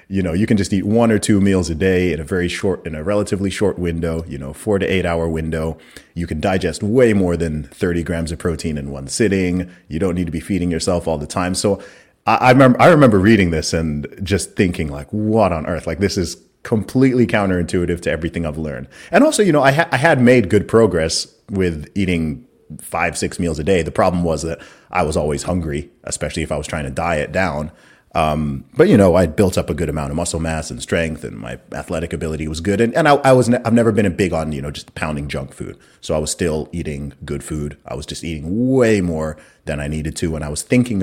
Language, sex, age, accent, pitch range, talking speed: English, male, 30-49, American, 80-100 Hz, 245 wpm